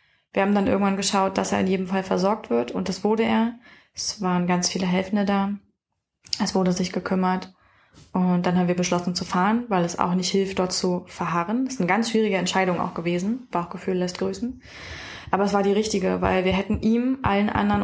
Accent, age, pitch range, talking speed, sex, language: German, 20-39, 180-205 Hz, 210 wpm, female, German